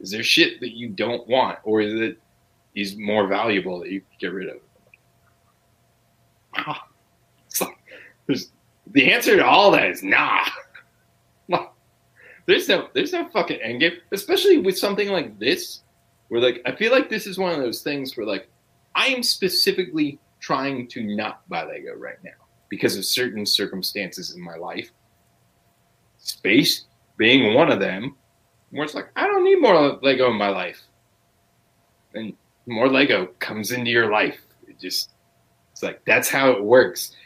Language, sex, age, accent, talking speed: English, male, 20-39, American, 165 wpm